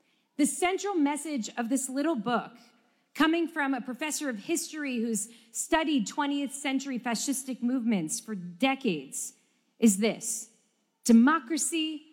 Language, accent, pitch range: English, American, 225-280 Hz